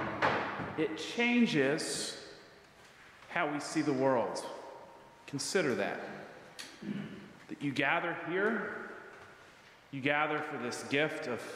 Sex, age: male, 40-59